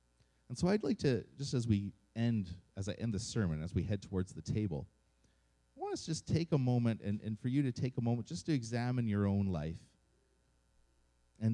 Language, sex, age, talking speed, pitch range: English, male, 30-49, 225 wpm, 80-120 Hz